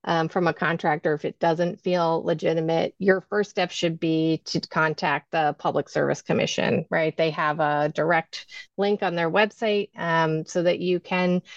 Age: 30-49